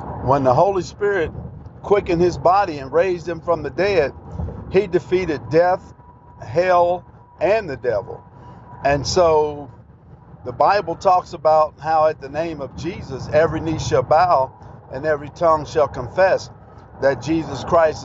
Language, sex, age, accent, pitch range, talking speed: English, male, 50-69, American, 145-180 Hz, 145 wpm